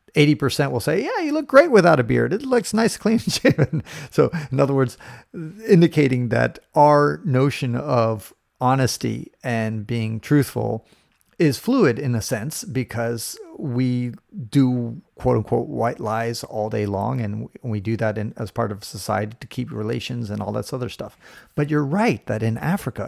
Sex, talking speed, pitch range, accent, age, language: male, 165 wpm, 115-160 Hz, American, 40-59, English